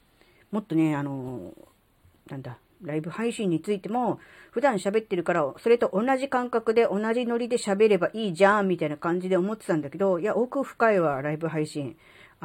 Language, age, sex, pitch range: Japanese, 40-59, female, 150-215 Hz